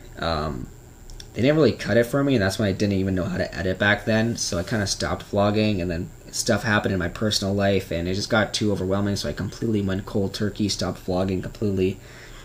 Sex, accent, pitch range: male, American, 95-115 Hz